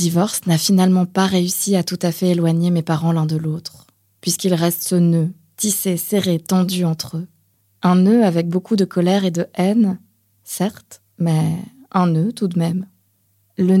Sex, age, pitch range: female, 20-39, 155-195 Hz